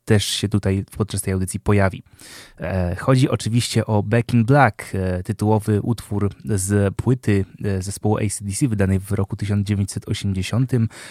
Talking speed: 120 wpm